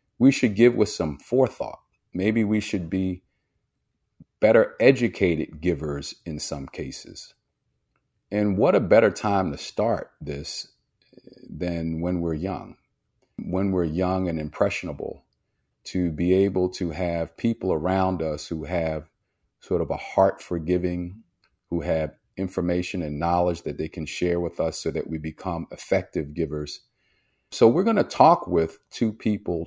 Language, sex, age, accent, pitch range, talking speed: English, male, 40-59, American, 80-105 Hz, 150 wpm